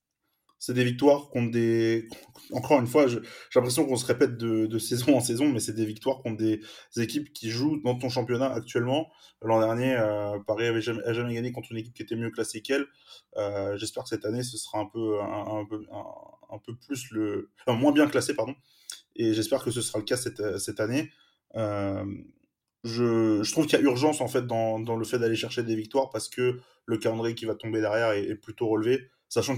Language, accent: French, French